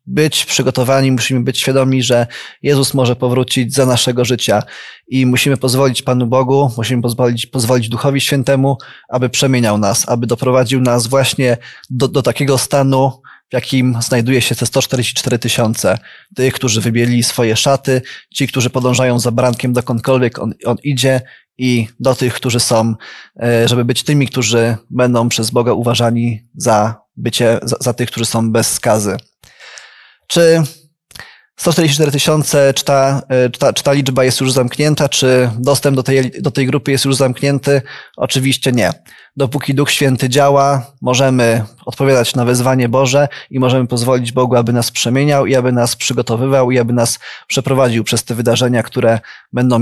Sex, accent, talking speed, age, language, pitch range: male, native, 155 wpm, 20-39, Polish, 120-135 Hz